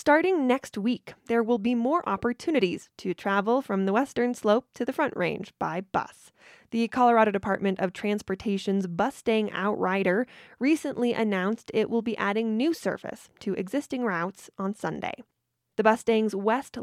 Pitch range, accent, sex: 195-245 Hz, American, female